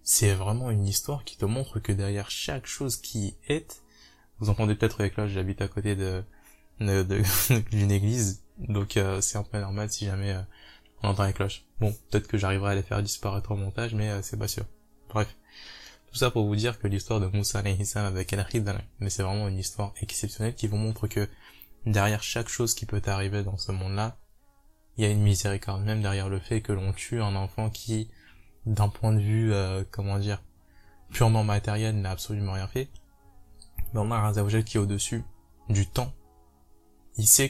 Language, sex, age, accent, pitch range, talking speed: French, male, 20-39, French, 100-110 Hz, 205 wpm